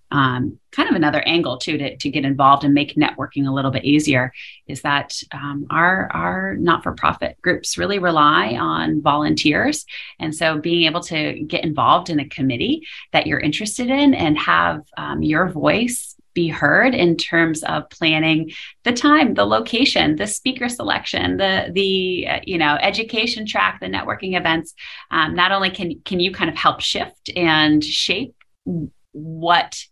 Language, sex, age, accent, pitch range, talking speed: English, female, 30-49, American, 140-175 Hz, 170 wpm